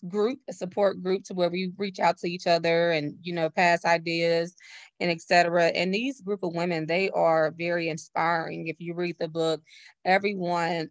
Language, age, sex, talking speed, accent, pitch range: English, 20-39, female, 185 wpm, American, 165-200 Hz